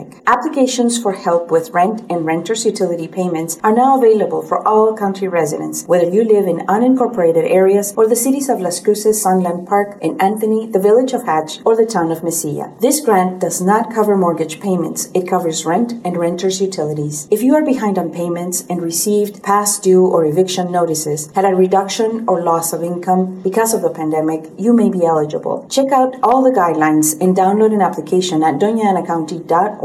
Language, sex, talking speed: English, female, 185 wpm